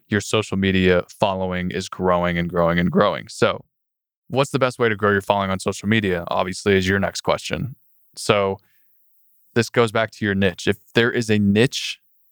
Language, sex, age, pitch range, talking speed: English, male, 20-39, 100-120 Hz, 190 wpm